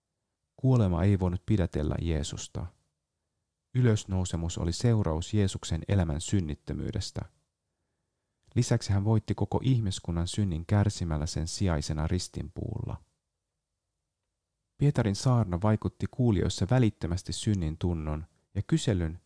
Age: 30-49